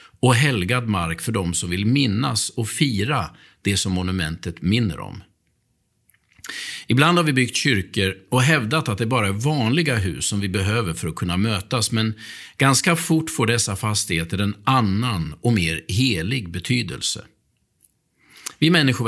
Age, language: 50-69, Swedish